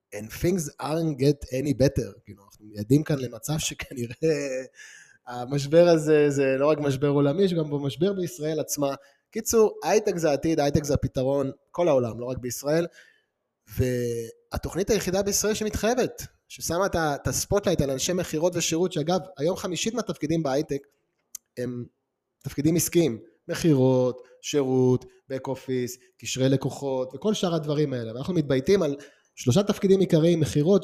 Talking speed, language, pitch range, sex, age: 140 wpm, Hebrew, 130-175 Hz, male, 20-39